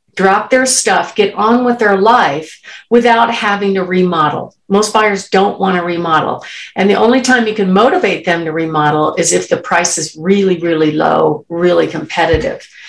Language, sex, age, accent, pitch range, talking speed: English, female, 50-69, American, 170-215 Hz, 175 wpm